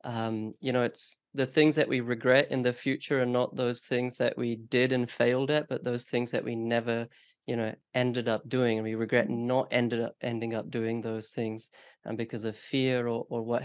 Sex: male